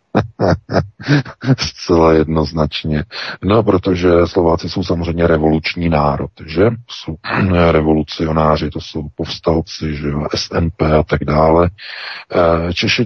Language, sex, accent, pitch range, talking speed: Czech, male, native, 80-105 Hz, 95 wpm